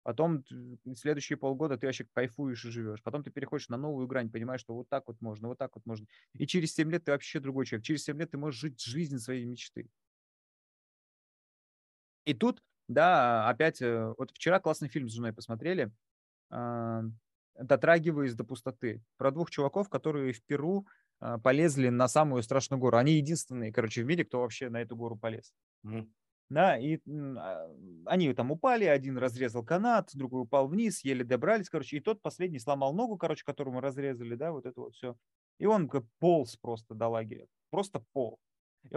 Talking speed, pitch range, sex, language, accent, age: 180 wpm, 115-150 Hz, male, Russian, native, 20-39